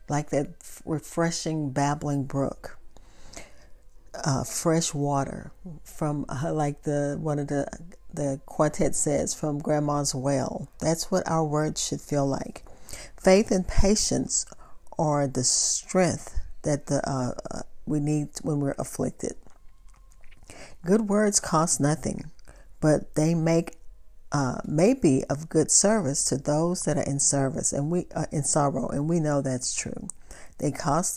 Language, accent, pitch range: English, American, 140-175 Hz